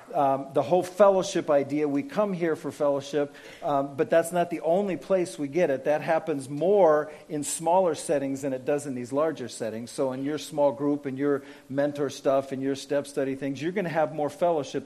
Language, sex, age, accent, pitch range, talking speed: English, male, 50-69, American, 140-190 Hz, 215 wpm